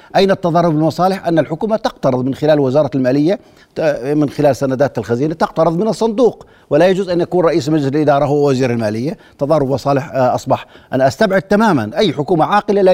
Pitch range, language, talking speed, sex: 140-185 Hz, Arabic, 170 wpm, male